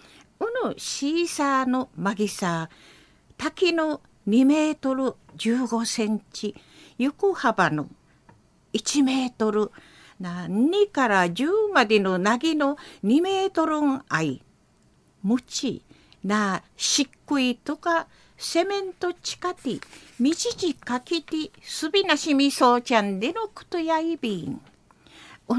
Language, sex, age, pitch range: Japanese, female, 50-69, 230-330 Hz